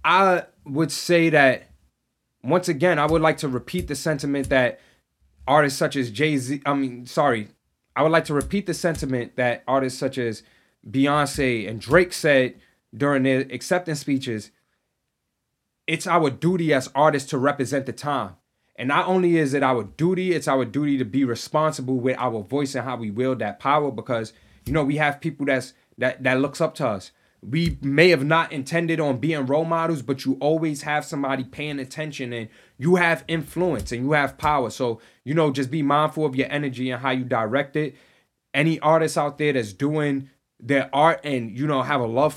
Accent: American